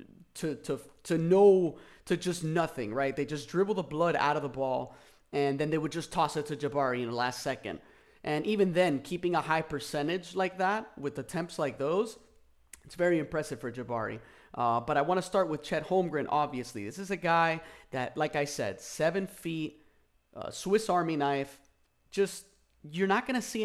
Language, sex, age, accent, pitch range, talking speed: English, male, 30-49, American, 135-175 Hz, 200 wpm